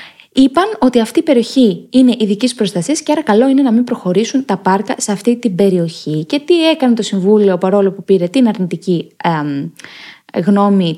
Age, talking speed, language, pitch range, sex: 20-39, 180 wpm, Greek, 190-255 Hz, female